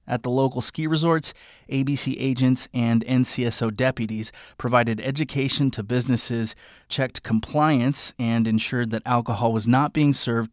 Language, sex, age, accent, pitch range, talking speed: English, male, 30-49, American, 115-135 Hz, 135 wpm